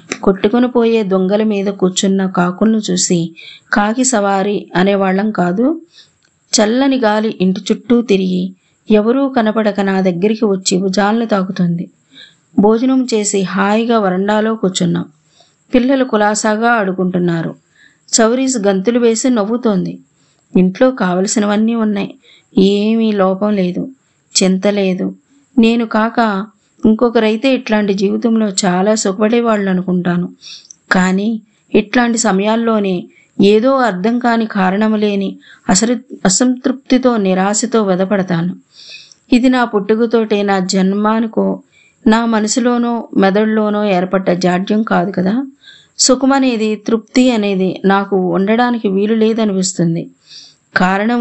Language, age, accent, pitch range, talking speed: Telugu, 20-39, native, 190-230 Hz, 95 wpm